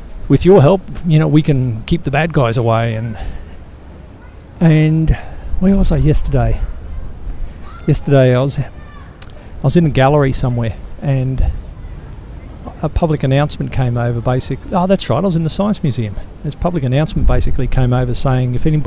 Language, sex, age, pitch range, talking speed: English, male, 50-69, 110-145 Hz, 165 wpm